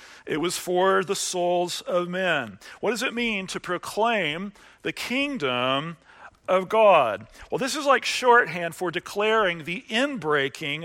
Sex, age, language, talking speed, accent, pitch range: male, 40-59, English, 145 wpm, American, 165-220 Hz